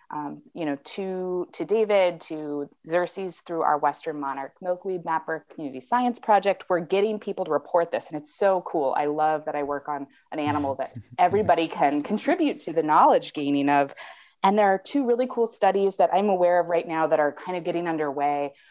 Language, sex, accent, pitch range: English, female, American, 145-190 Hz